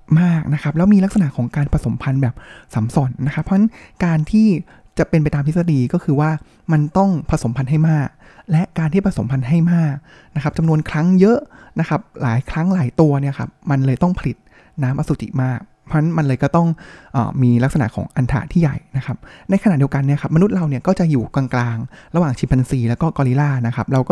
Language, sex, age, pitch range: Thai, male, 20-39, 130-165 Hz